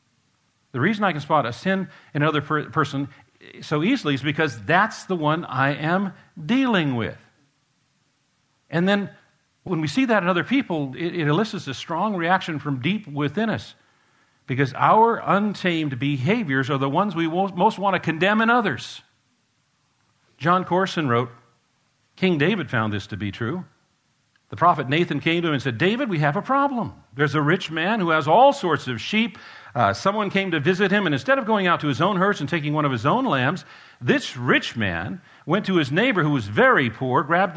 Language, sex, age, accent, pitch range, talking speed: English, male, 50-69, American, 140-195 Hz, 195 wpm